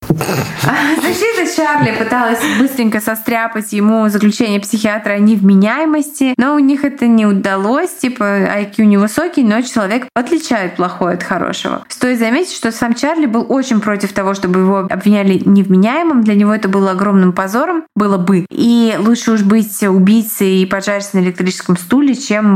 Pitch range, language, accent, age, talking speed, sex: 190-235 Hz, Russian, native, 20-39, 150 wpm, female